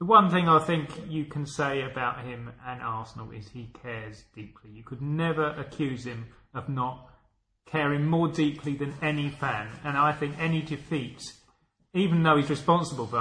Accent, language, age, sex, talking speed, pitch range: British, English, 30-49, male, 175 wpm, 115-145 Hz